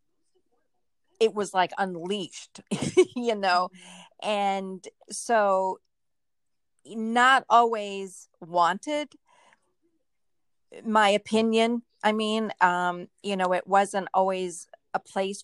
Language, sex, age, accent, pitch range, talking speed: English, female, 40-59, American, 180-215 Hz, 90 wpm